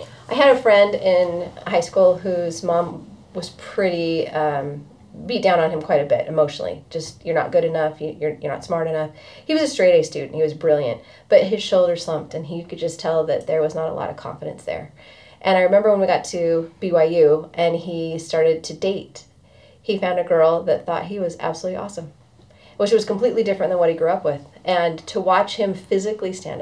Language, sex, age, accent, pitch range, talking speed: English, female, 30-49, American, 160-200 Hz, 215 wpm